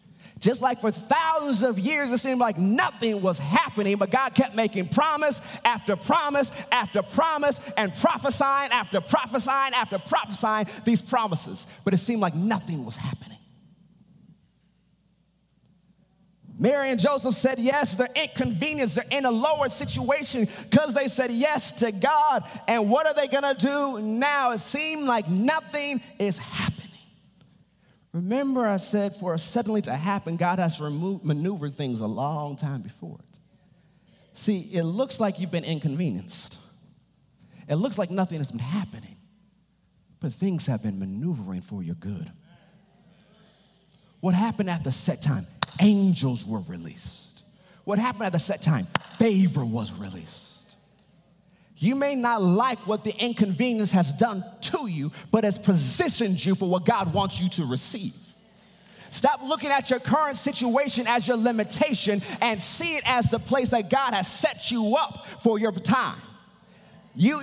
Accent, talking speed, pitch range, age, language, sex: American, 155 wpm, 180-245 Hz, 30-49, English, male